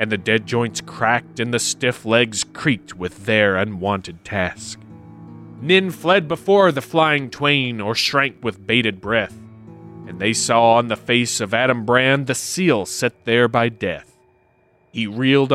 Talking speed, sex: 160 wpm, male